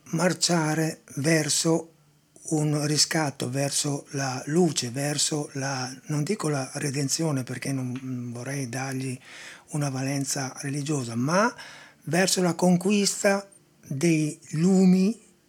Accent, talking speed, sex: native, 100 wpm, male